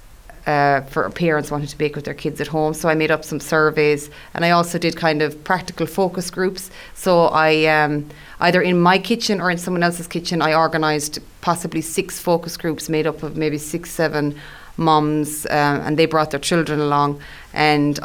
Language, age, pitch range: English, 30-49, 150-170 Hz